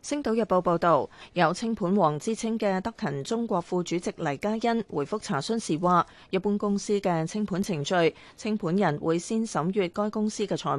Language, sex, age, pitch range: Chinese, female, 30-49, 170-215 Hz